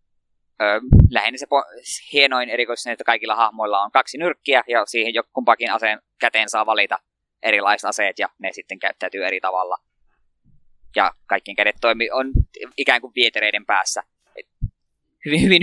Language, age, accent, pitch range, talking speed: Finnish, 20-39, native, 110-140 Hz, 140 wpm